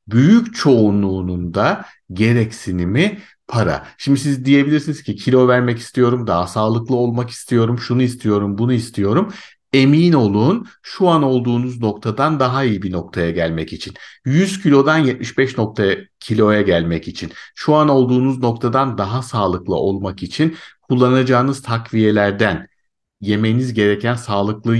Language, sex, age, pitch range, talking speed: Turkish, male, 50-69, 100-130 Hz, 125 wpm